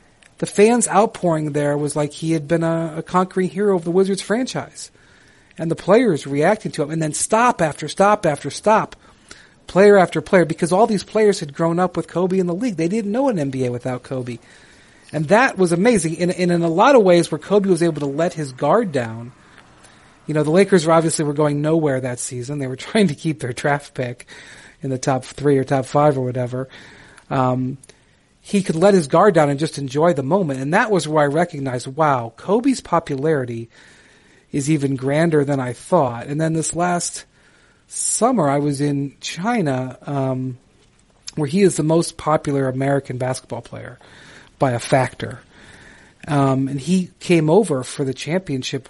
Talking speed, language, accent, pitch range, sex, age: 195 wpm, English, American, 135-180 Hz, male, 40-59